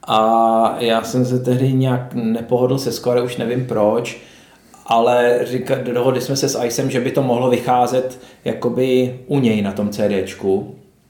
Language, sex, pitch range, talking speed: Czech, male, 115-130 Hz, 155 wpm